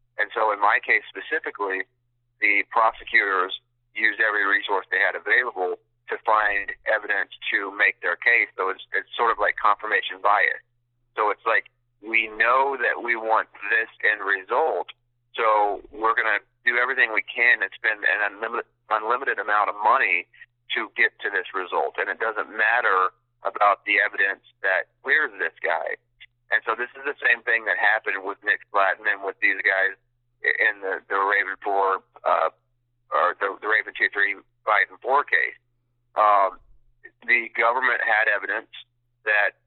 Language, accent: English, American